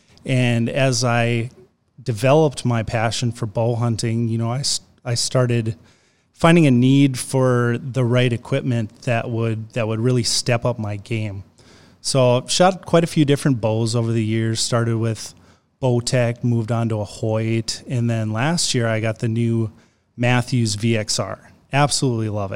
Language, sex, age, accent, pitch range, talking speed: English, male, 30-49, American, 115-135 Hz, 160 wpm